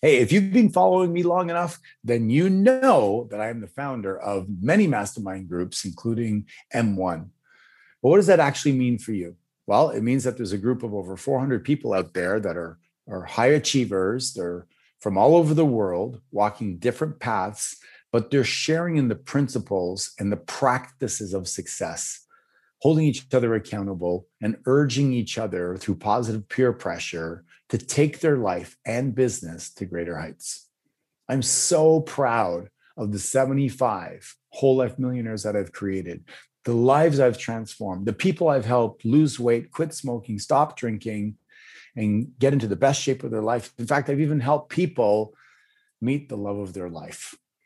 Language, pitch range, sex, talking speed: English, 105-140 Hz, male, 170 wpm